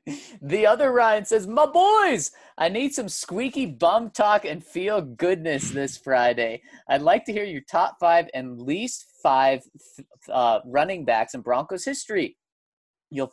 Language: English